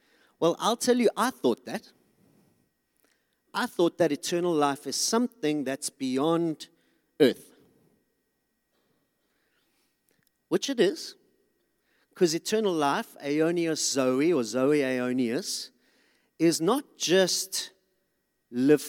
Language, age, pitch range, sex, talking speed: English, 40-59, 135-195 Hz, male, 100 wpm